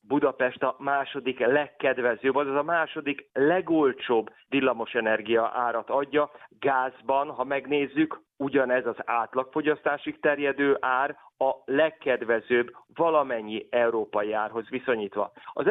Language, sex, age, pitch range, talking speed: Hungarian, male, 30-49, 125-150 Hz, 100 wpm